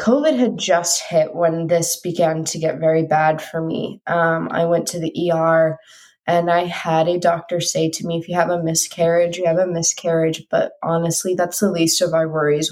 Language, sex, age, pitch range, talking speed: English, female, 20-39, 160-180 Hz, 210 wpm